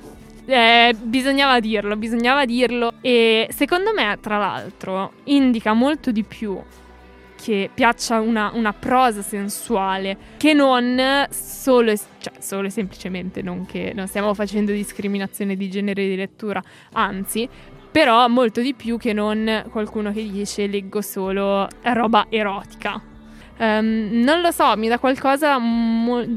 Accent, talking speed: native, 135 wpm